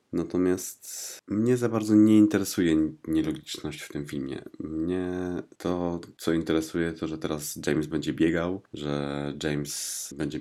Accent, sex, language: native, male, Polish